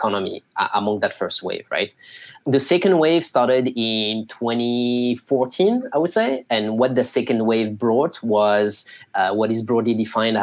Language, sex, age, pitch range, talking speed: French, male, 20-39, 110-135 Hz, 160 wpm